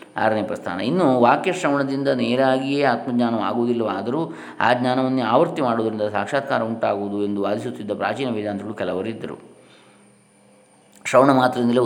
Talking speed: 95 wpm